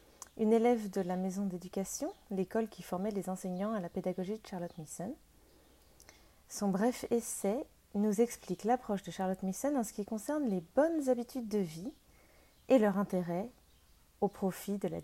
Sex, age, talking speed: female, 30-49, 170 wpm